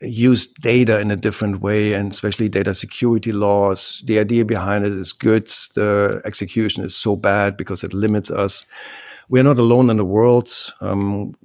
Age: 50-69